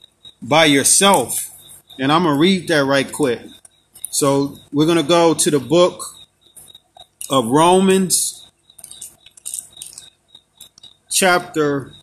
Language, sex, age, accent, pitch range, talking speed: English, male, 40-59, American, 150-185 Hz, 95 wpm